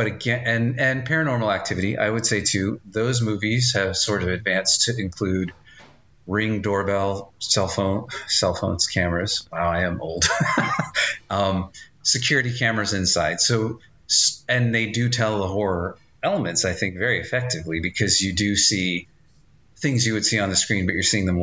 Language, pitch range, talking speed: English, 90-115 Hz, 170 wpm